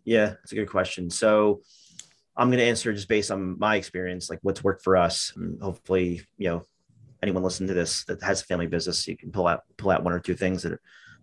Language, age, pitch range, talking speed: English, 30-49, 95-115 Hz, 240 wpm